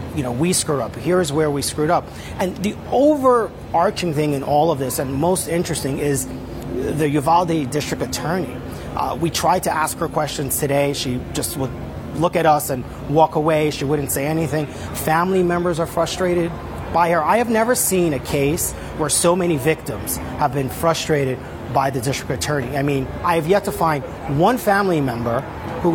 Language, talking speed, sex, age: English, 190 wpm, male, 40-59